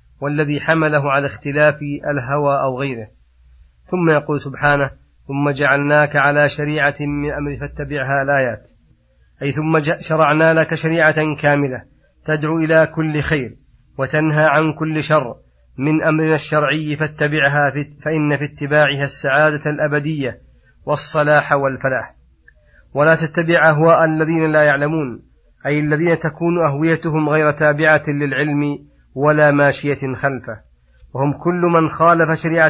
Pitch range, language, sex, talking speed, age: 140-155 Hz, Arabic, male, 115 wpm, 30-49